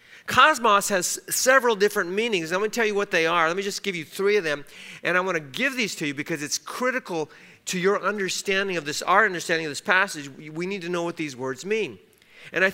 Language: English